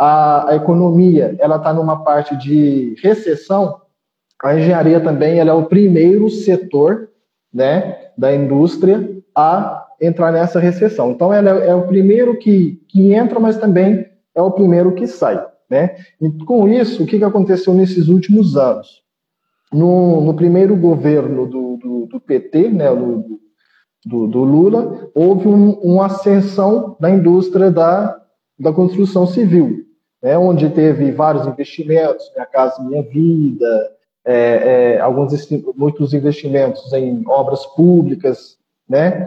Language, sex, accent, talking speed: Portuguese, male, Brazilian, 140 wpm